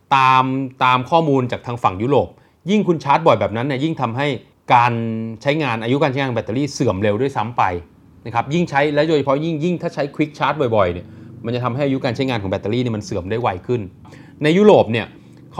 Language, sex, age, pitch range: Thai, male, 30-49, 110-145 Hz